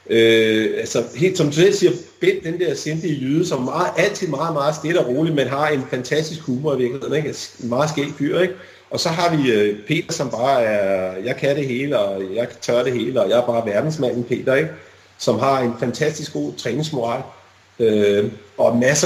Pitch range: 110-155 Hz